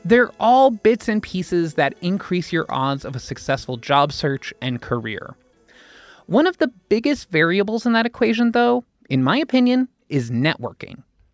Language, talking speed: English, 160 wpm